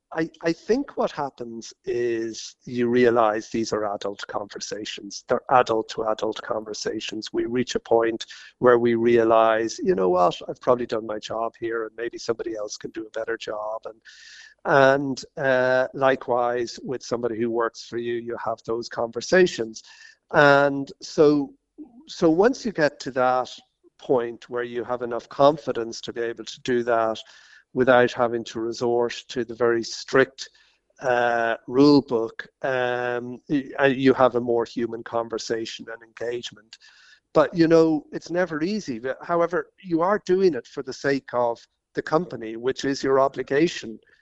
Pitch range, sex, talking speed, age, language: 115-140 Hz, male, 155 wpm, 50-69, English